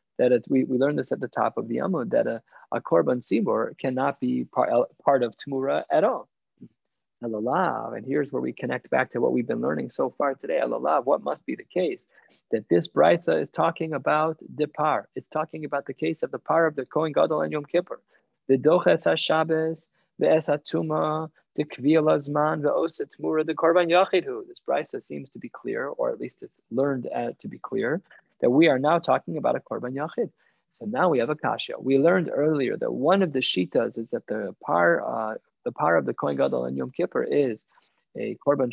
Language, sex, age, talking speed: English, male, 20-39, 190 wpm